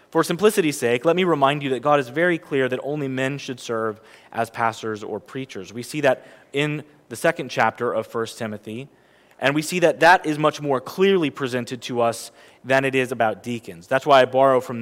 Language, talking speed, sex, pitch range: English, 215 wpm, male, 125-165 Hz